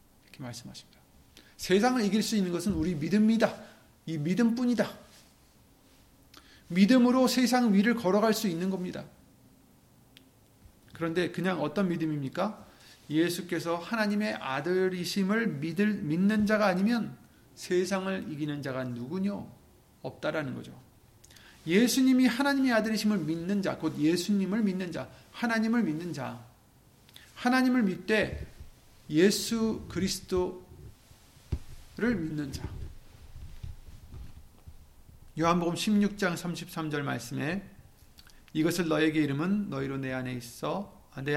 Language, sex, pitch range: Korean, male, 125-200 Hz